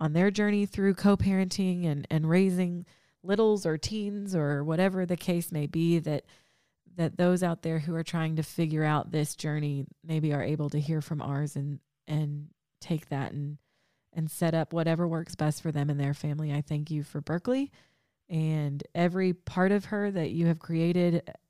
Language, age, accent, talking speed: English, 20-39, American, 185 wpm